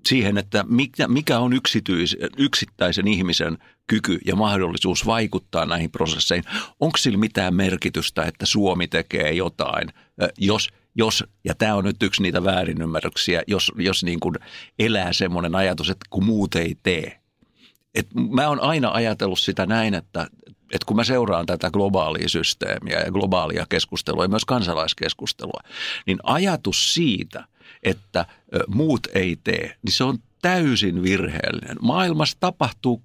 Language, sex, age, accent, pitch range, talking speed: Finnish, male, 60-79, native, 95-125 Hz, 130 wpm